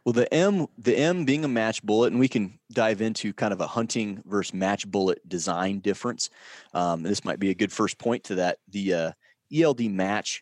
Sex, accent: male, American